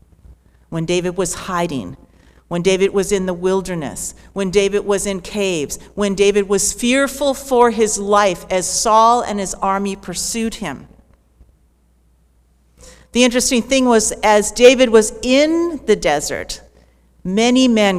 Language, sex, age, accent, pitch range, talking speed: English, female, 50-69, American, 175-225 Hz, 135 wpm